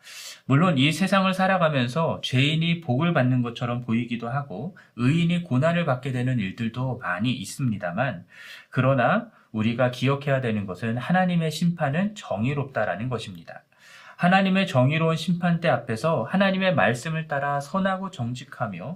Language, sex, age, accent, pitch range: Korean, male, 40-59, native, 120-170 Hz